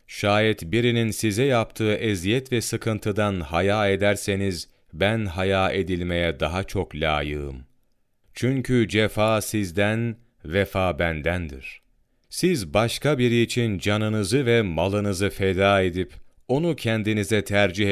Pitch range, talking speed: 85-110 Hz, 105 wpm